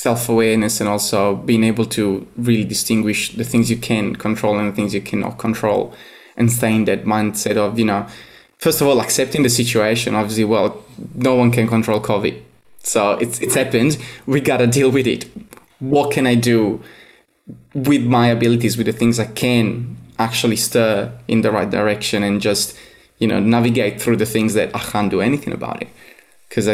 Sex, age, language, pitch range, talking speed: male, 20-39, English, 105-120 Hz, 190 wpm